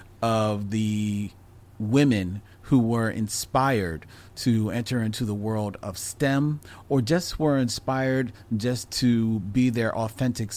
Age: 40-59